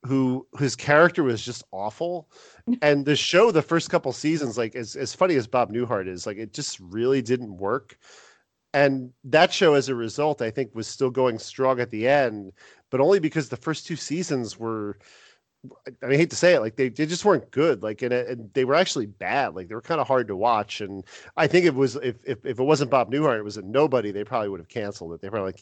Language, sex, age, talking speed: English, male, 40-59, 240 wpm